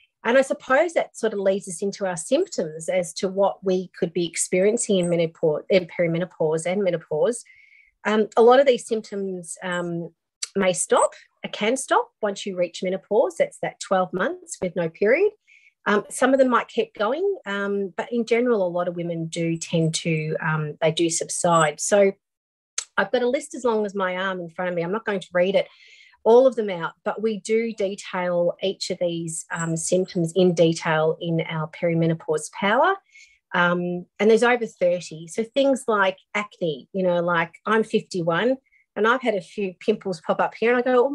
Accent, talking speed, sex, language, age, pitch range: Australian, 195 wpm, female, English, 40-59, 175-240 Hz